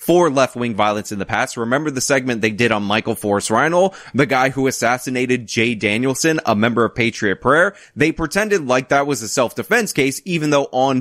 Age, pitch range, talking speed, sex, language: 20-39, 115-150 Hz, 195 wpm, male, English